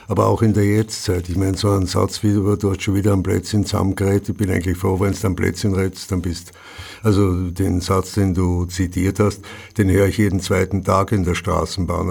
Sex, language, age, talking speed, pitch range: male, German, 60-79, 230 wpm, 90-100 Hz